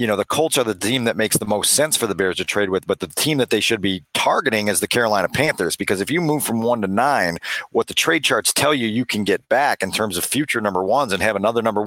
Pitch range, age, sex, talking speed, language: 115-140 Hz, 40-59, male, 295 wpm, English